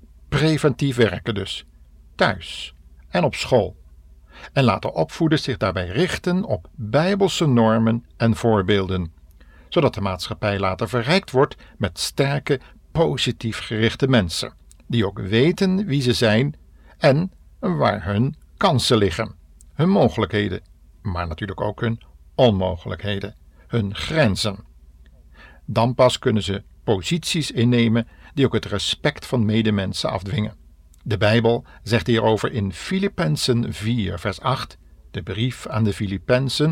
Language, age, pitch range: Dutch, 50-69, 90-130 Hz